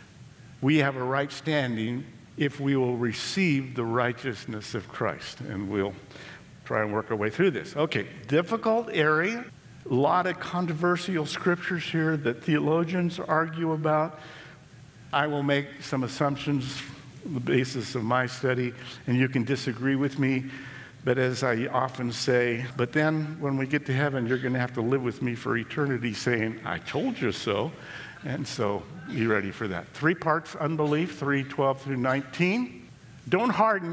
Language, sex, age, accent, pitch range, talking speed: English, male, 50-69, American, 125-160 Hz, 165 wpm